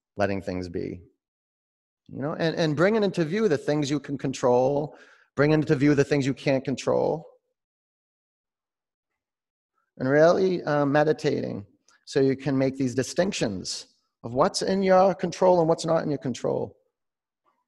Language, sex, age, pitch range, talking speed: English, male, 30-49, 125-175 Hz, 150 wpm